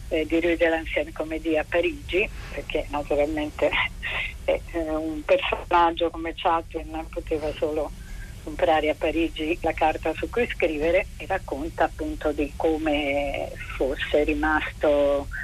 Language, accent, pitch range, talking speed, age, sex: Italian, native, 150-165 Hz, 130 wpm, 40-59, female